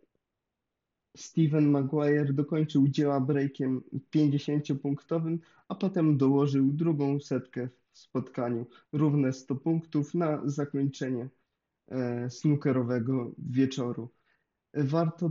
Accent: native